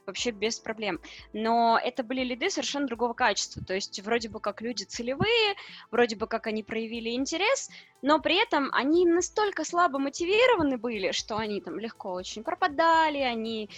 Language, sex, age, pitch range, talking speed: Russian, female, 20-39, 220-285 Hz, 165 wpm